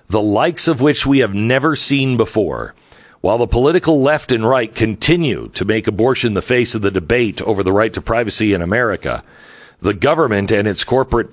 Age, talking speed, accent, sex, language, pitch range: 50-69, 190 wpm, American, male, English, 110-145 Hz